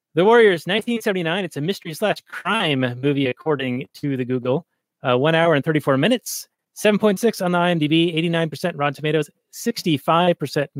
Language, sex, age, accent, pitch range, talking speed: English, male, 30-49, American, 140-175 Hz, 150 wpm